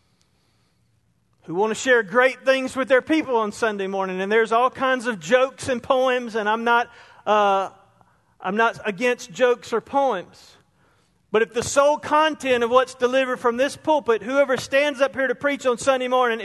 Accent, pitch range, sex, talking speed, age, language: American, 205-265 Hz, male, 180 wpm, 40-59, English